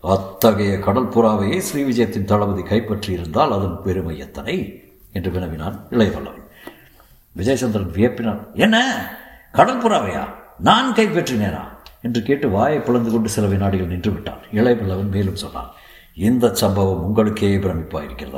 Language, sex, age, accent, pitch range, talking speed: Tamil, male, 60-79, native, 95-115 Hz, 115 wpm